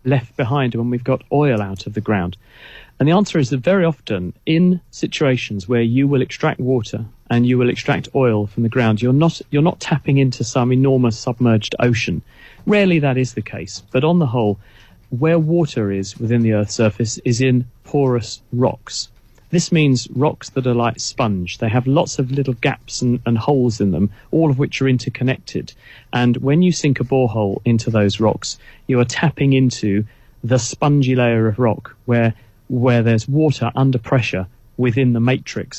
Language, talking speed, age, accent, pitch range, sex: English, 190 wpm, 40-59, British, 110-135 Hz, male